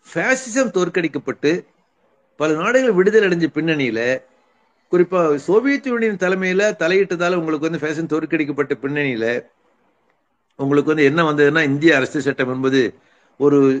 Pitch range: 145-180 Hz